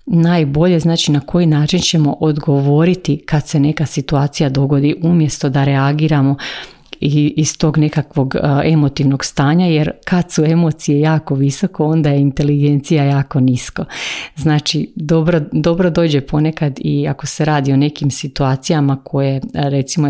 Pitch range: 140-160 Hz